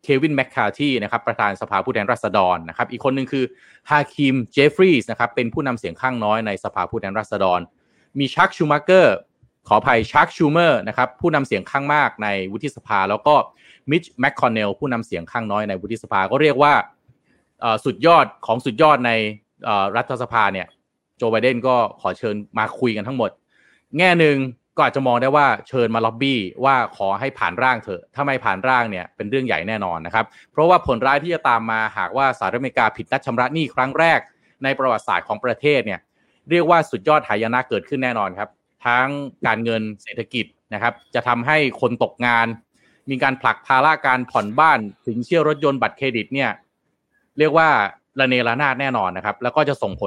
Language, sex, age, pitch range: Thai, male, 20-39, 115-140 Hz